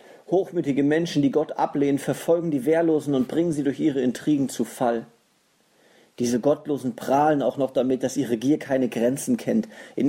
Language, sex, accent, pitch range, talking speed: German, male, German, 130-165 Hz, 170 wpm